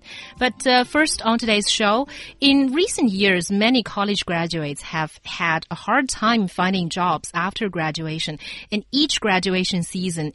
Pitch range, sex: 160-220 Hz, female